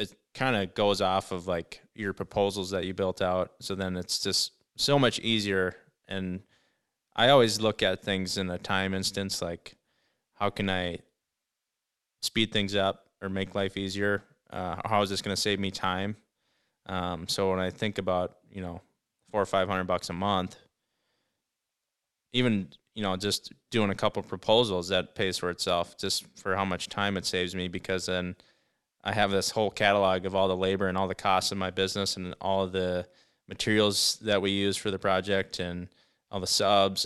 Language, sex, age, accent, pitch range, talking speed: English, male, 20-39, American, 90-100 Hz, 190 wpm